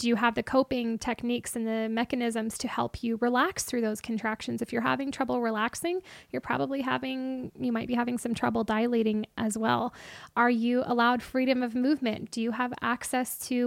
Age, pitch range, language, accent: 10-29, 235-275 Hz, English, American